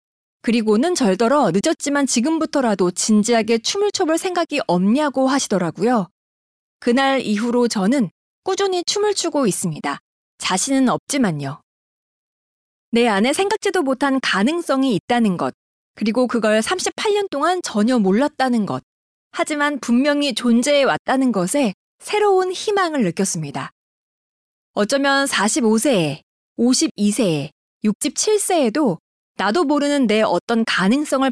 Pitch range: 210-295 Hz